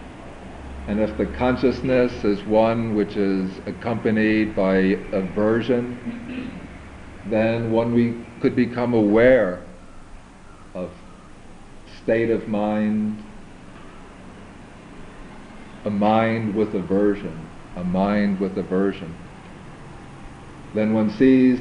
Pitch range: 95-115 Hz